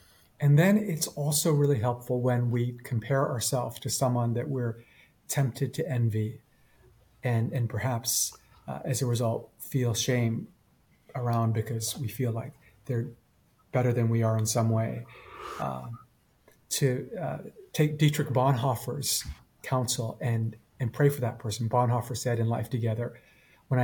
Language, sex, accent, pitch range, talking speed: English, male, American, 115-135 Hz, 145 wpm